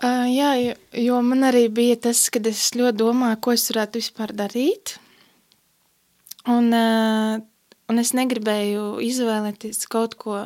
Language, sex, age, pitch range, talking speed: Russian, female, 20-39, 220-245 Hz, 145 wpm